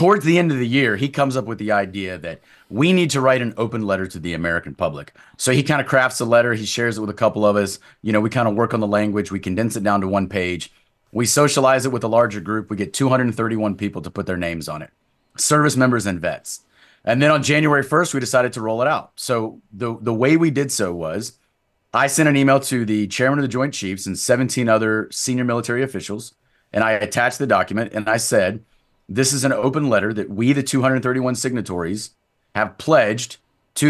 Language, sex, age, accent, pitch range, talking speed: English, male, 30-49, American, 105-130 Hz, 235 wpm